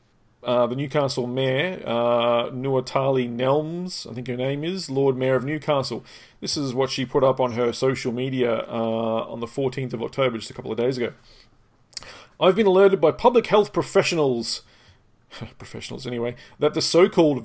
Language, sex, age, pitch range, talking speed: English, male, 40-59, 125-150 Hz, 175 wpm